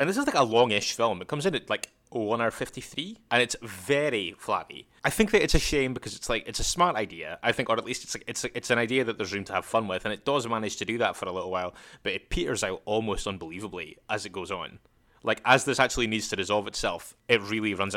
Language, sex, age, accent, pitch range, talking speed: English, male, 20-39, British, 100-125 Hz, 280 wpm